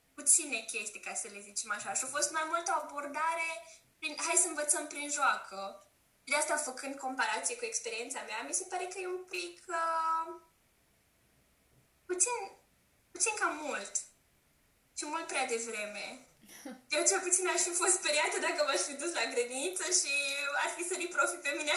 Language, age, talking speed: Romanian, 10-29, 175 wpm